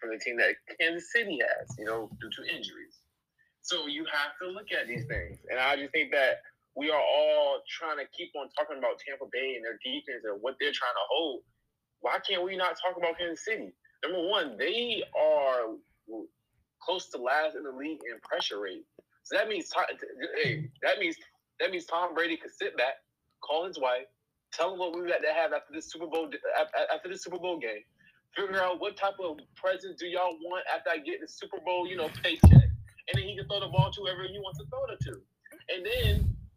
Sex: male